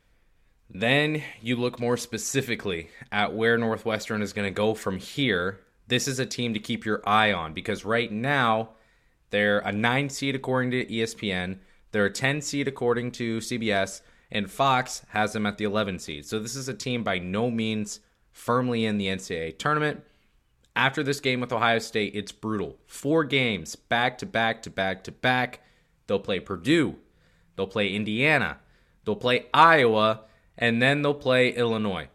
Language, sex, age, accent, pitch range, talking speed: English, male, 20-39, American, 105-120 Hz, 170 wpm